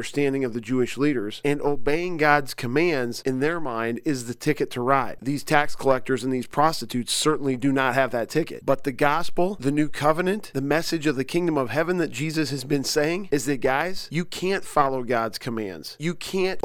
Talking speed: 205 wpm